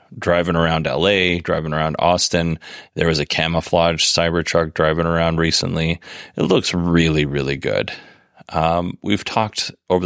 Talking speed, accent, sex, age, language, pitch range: 135 wpm, American, male, 30-49, English, 85-95 Hz